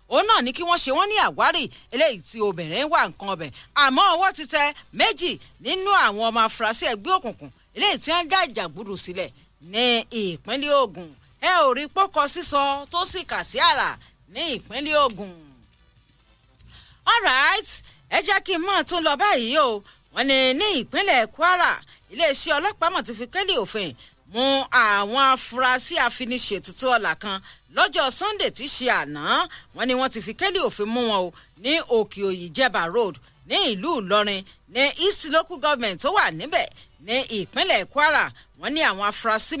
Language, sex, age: English, female, 40-59